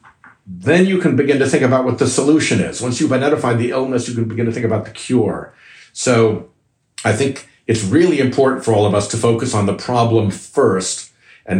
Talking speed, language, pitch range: 210 wpm, English, 105-125 Hz